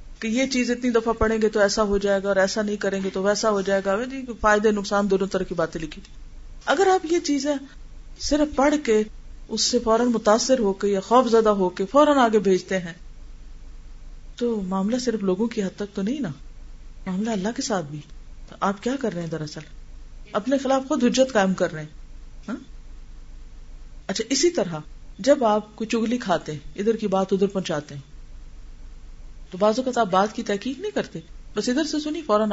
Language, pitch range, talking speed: Urdu, 190-240 Hz, 200 wpm